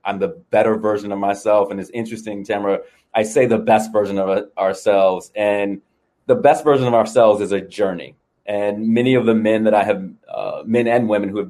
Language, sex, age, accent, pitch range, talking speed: English, male, 30-49, American, 110-130 Hz, 210 wpm